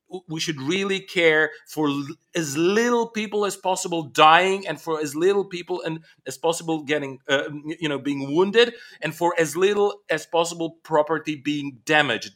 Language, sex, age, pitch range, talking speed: English, male, 40-59, 135-180 Hz, 165 wpm